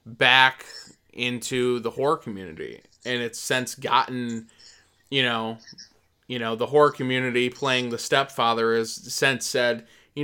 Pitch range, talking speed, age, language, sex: 115-135 Hz, 135 wpm, 20-39, English, male